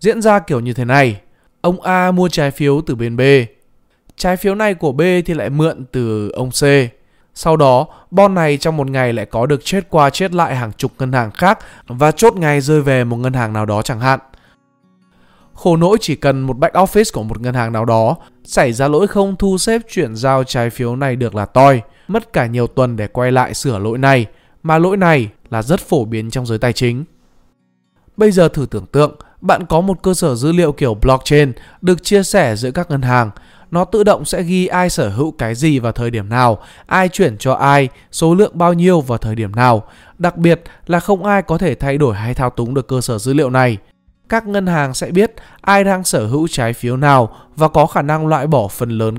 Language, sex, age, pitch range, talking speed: Vietnamese, male, 20-39, 120-175 Hz, 230 wpm